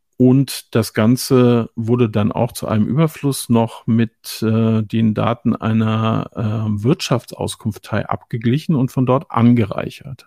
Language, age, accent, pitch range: German, 50-69, German, 110-135 Hz